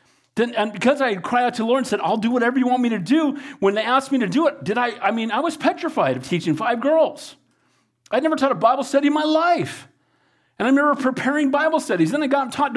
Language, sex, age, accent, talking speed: English, male, 40-59, American, 260 wpm